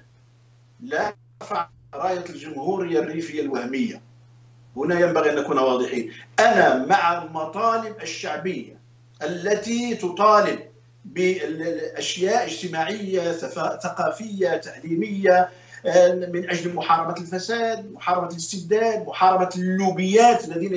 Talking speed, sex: 85 wpm, male